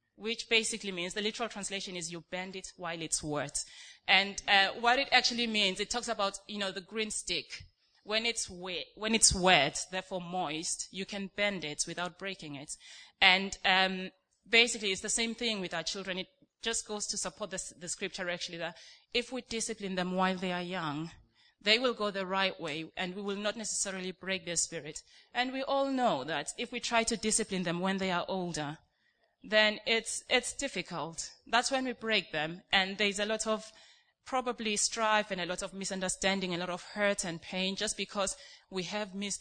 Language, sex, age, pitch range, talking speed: English, female, 30-49, 180-215 Hz, 195 wpm